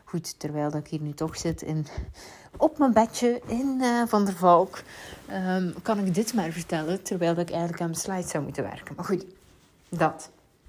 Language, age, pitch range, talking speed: Dutch, 30-49, 165-215 Hz, 200 wpm